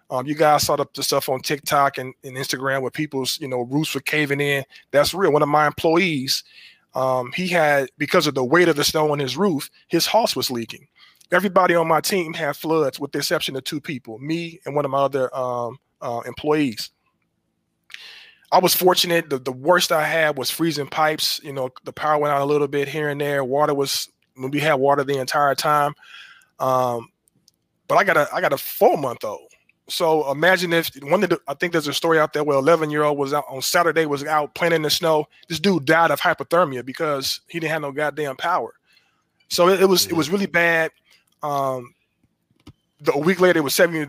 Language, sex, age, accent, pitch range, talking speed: English, male, 20-39, American, 140-165 Hz, 220 wpm